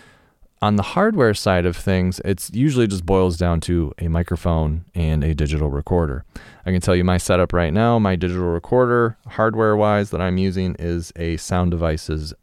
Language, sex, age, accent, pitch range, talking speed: English, male, 30-49, American, 80-100 Hz, 180 wpm